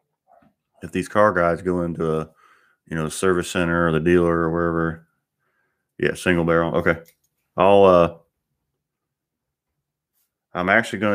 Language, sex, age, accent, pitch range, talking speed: English, male, 30-49, American, 80-90 Hz, 135 wpm